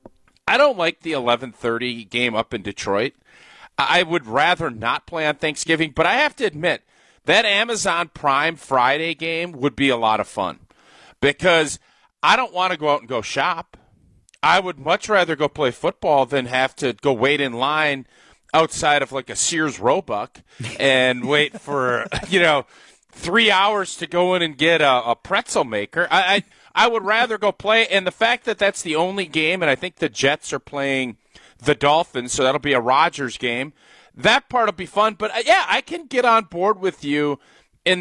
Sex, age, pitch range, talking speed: male, 40-59, 135-185 Hz, 195 wpm